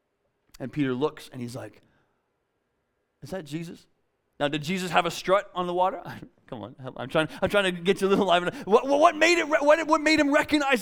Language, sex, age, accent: English, male, 30-49, American